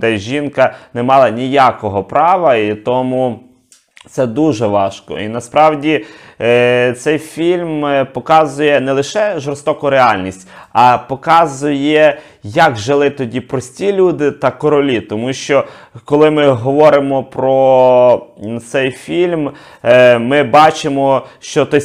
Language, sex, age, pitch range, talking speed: Ukrainian, male, 30-49, 115-145 Hz, 115 wpm